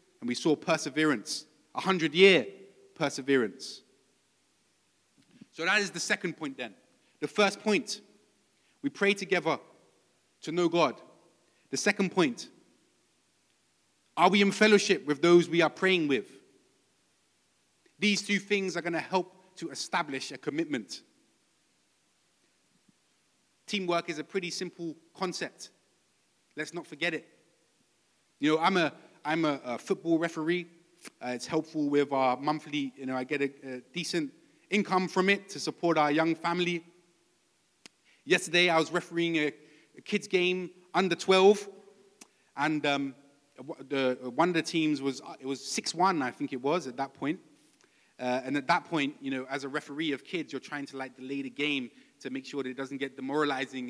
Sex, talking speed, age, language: male, 160 wpm, 30-49, English